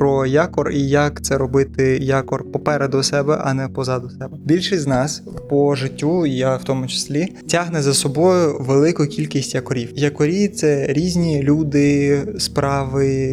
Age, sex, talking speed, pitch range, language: 20-39, male, 155 wpm, 135-155 Hz, Ukrainian